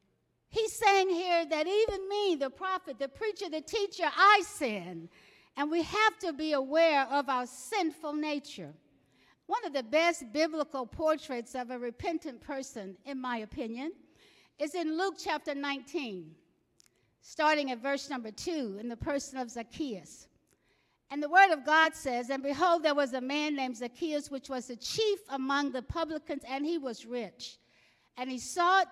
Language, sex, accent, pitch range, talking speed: English, female, American, 265-340 Hz, 165 wpm